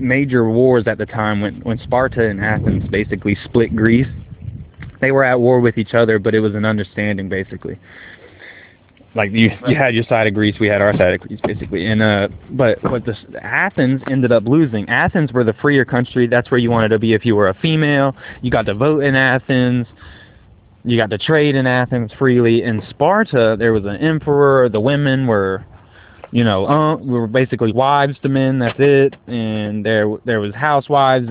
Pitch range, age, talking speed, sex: 110-135 Hz, 20-39, 200 wpm, male